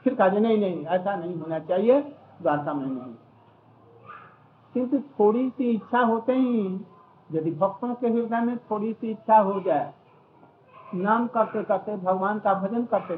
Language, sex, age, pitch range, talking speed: Hindi, male, 60-79, 195-235 Hz, 150 wpm